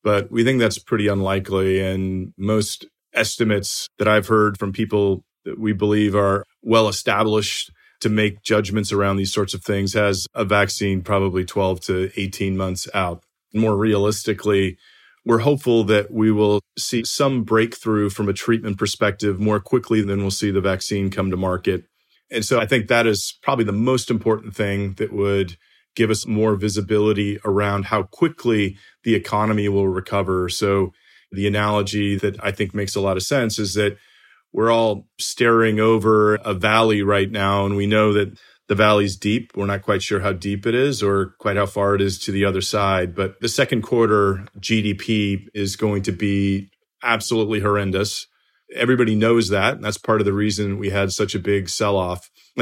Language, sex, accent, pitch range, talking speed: English, male, American, 100-110 Hz, 180 wpm